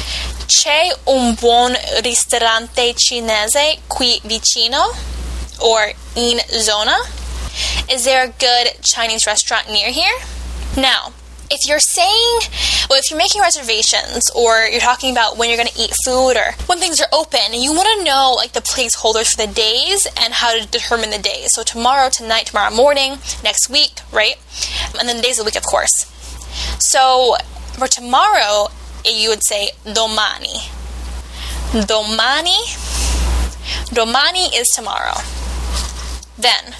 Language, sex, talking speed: Italian, female, 140 wpm